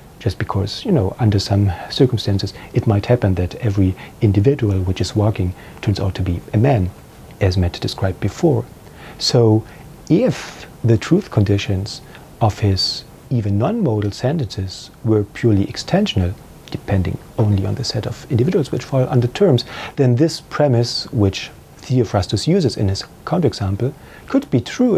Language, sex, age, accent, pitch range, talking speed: English, male, 40-59, German, 100-130 Hz, 150 wpm